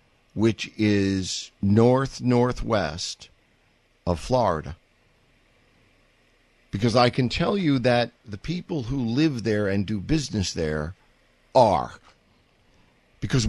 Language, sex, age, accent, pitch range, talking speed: English, male, 50-69, American, 110-145 Hz, 100 wpm